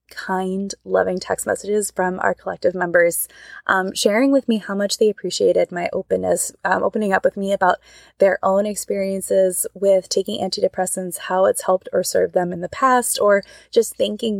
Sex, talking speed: female, 175 wpm